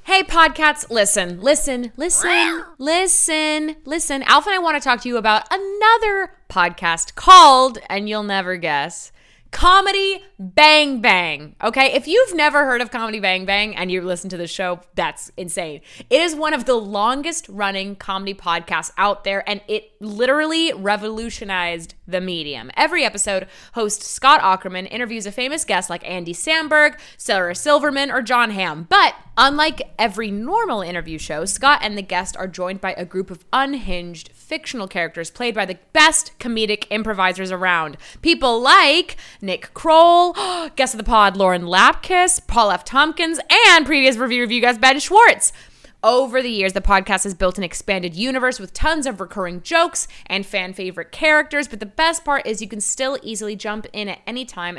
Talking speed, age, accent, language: 170 wpm, 20-39, American, English